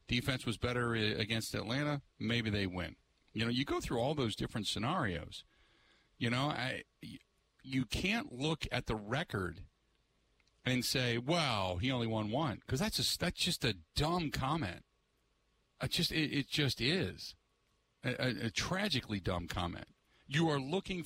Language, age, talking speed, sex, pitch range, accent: English, 50-69, 155 wpm, male, 110-150 Hz, American